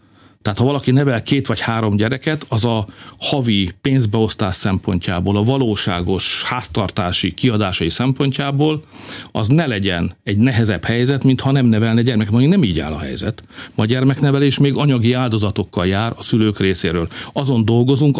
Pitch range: 100-130 Hz